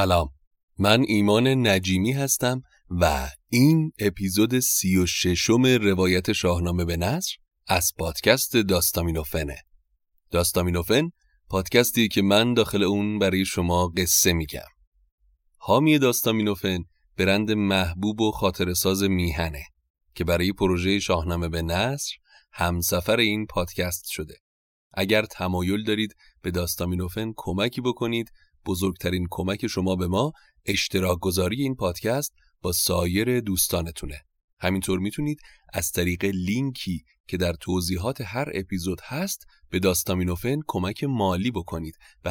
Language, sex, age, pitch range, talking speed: Persian, male, 30-49, 85-105 Hz, 115 wpm